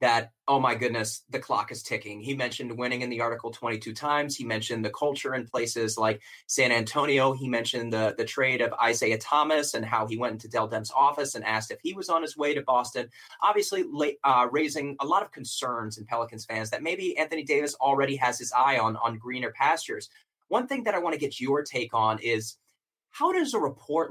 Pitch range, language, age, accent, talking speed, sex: 115-155 Hz, English, 30-49, American, 220 wpm, male